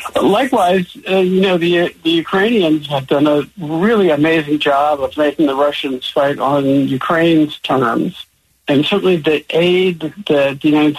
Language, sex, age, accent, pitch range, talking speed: English, male, 60-79, American, 130-160 Hz, 155 wpm